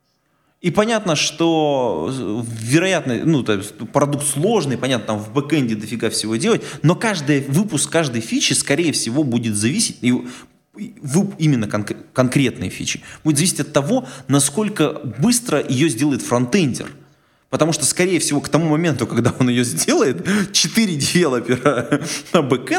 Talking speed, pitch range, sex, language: 135 wpm, 115-170 Hz, male, Russian